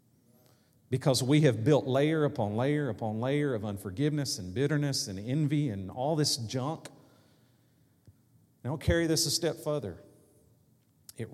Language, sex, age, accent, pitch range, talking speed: English, male, 40-59, American, 105-130 Hz, 140 wpm